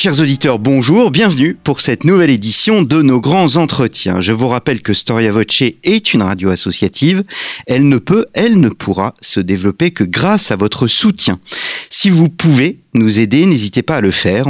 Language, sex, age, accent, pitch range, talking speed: French, male, 40-59, French, 110-170 Hz, 185 wpm